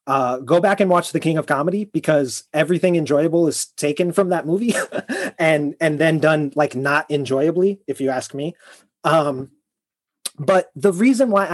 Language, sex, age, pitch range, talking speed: English, male, 30-49, 135-170 Hz, 170 wpm